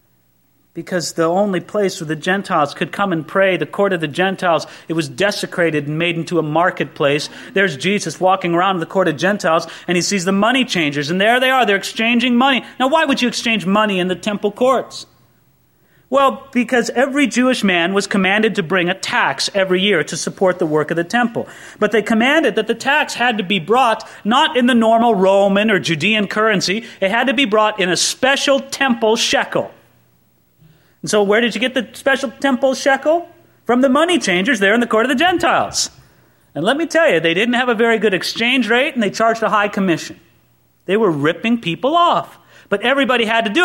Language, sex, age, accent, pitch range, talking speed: English, male, 30-49, American, 180-255 Hz, 210 wpm